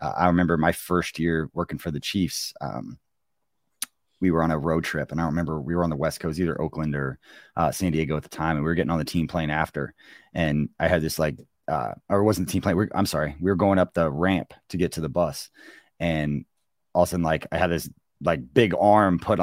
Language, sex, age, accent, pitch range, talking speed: English, male, 30-49, American, 80-90 Hz, 255 wpm